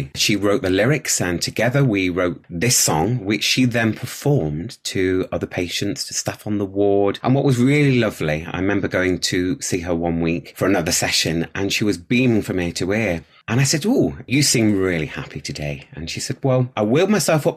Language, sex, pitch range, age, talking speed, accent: English, male, 85-125 Hz, 30-49, 215 wpm, British